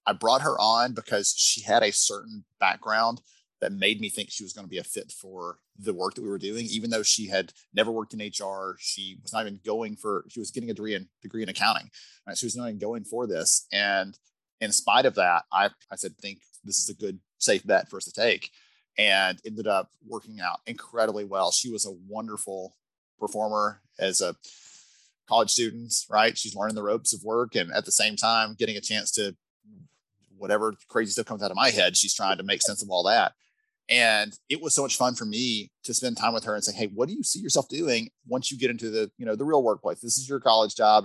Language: English